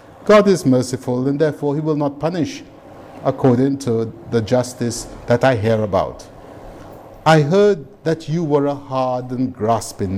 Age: 50-69